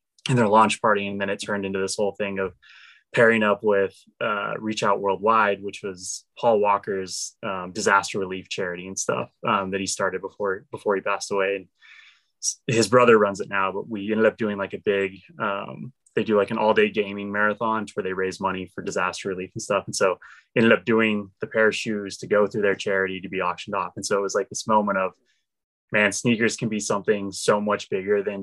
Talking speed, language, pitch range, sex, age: 225 wpm, English, 95-115 Hz, male, 20-39